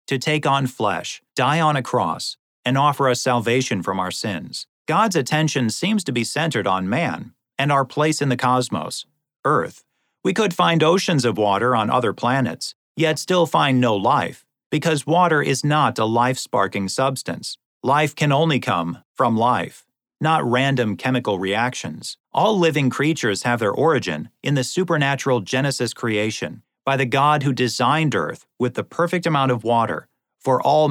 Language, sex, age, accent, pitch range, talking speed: English, male, 40-59, American, 115-150 Hz, 165 wpm